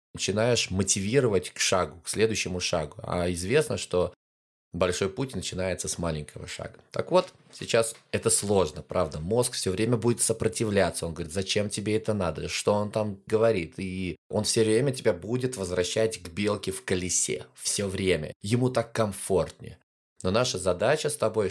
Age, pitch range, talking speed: 20-39, 90-115 Hz, 160 wpm